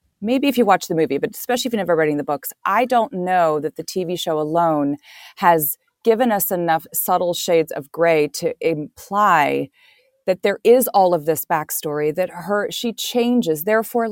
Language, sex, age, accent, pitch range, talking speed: English, female, 30-49, American, 155-220 Hz, 185 wpm